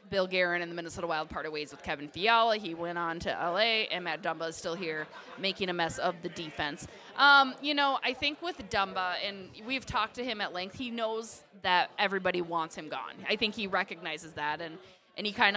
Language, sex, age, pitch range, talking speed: English, female, 20-39, 175-215 Hz, 225 wpm